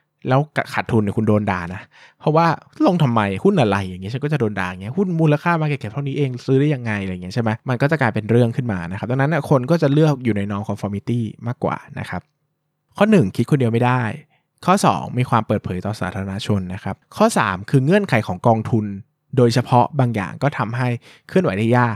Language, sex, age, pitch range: Thai, male, 20-39, 105-140 Hz